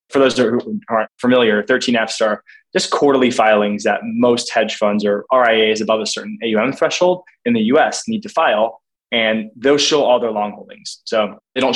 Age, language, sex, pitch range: 20-39, English, male, 110-160 Hz